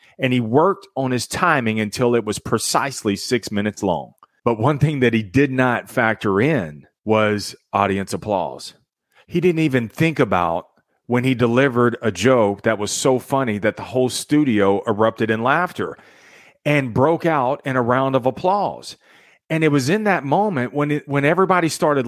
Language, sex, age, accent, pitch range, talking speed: English, male, 40-59, American, 110-150 Hz, 175 wpm